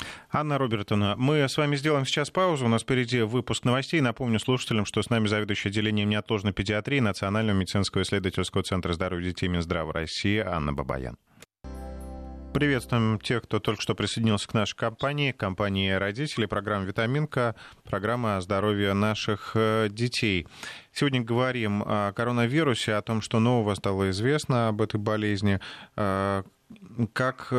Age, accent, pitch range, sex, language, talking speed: 30-49, native, 95-115 Hz, male, Russian, 135 wpm